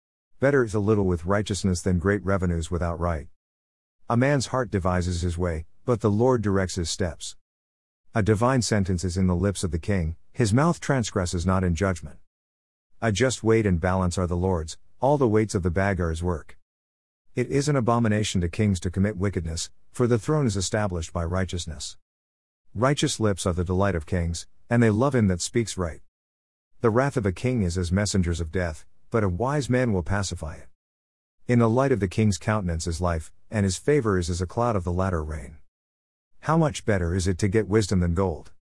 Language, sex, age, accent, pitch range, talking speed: English, male, 50-69, American, 85-110 Hz, 205 wpm